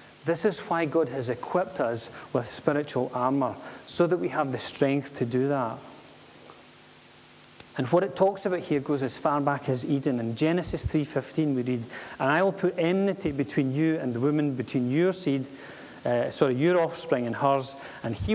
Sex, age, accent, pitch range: male, 30-49, British, 130-160 Hz